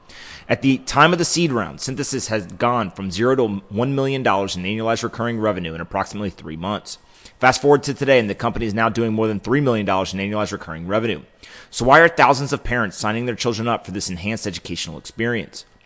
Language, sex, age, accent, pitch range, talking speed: English, male, 30-49, American, 100-125 Hz, 210 wpm